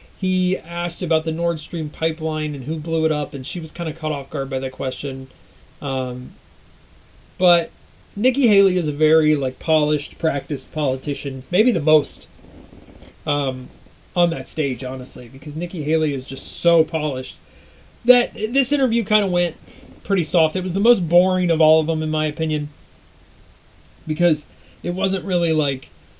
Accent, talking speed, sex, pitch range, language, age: American, 170 wpm, male, 135-175 Hz, English, 30-49